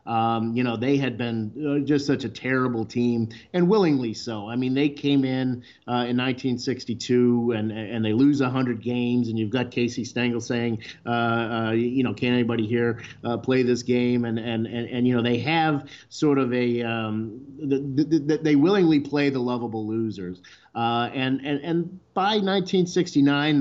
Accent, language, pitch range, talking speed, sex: American, English, 115-140 Hz, 185 wpm, male